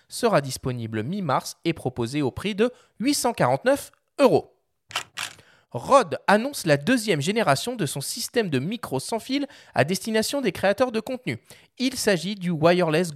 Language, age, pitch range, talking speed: French, 30-49, 150-235 Hz, 145 wpm